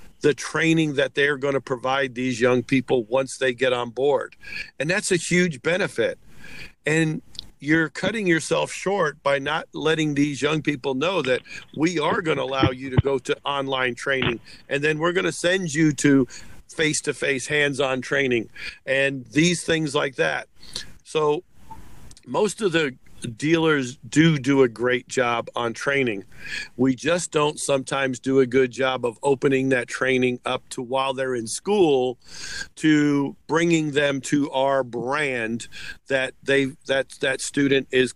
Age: 50-69